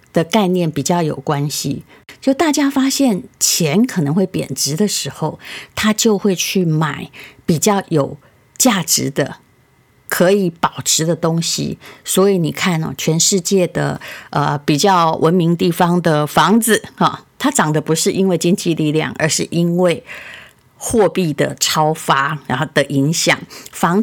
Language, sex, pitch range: Chinese, female, 150-200 Hz